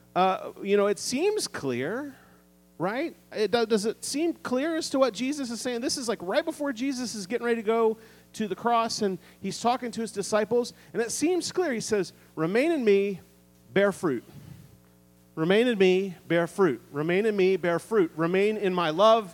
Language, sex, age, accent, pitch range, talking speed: English, male, 40-59, American, 165-240 Hz, 190 wpm